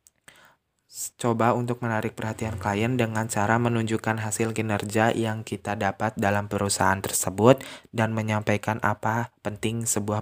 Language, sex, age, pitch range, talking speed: Indonesian, male, 20-39, 100-110 Hz, 125 wpm